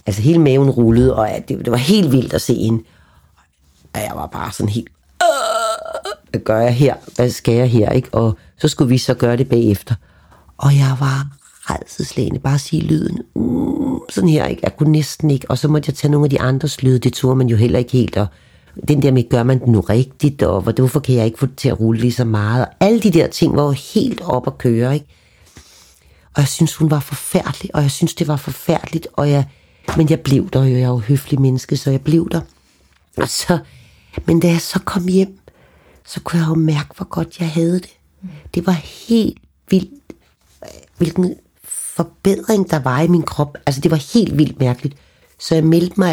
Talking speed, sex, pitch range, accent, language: 225 wpm, female, 120-165 Hz, native, Danish